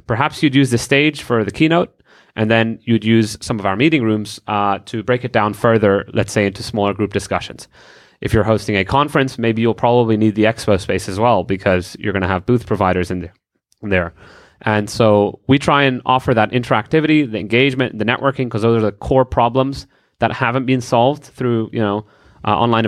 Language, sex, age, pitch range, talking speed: English, male, 30-49, 105-125 Hz, 205 wpm